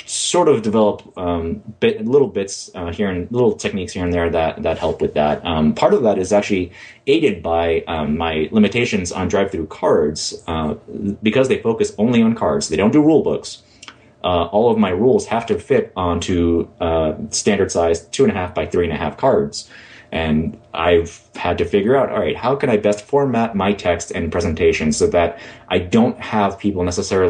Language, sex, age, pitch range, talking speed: English, male, 30-49, 85-125 Hz, 200 wpm